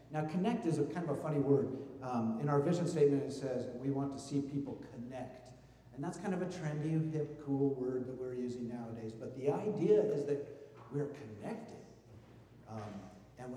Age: 50-69